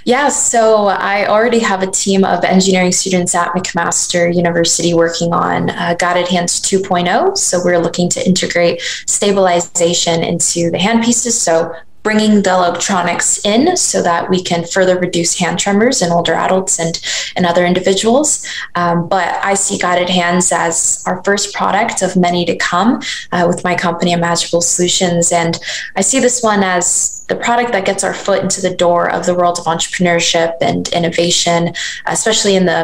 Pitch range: 170-195 Hz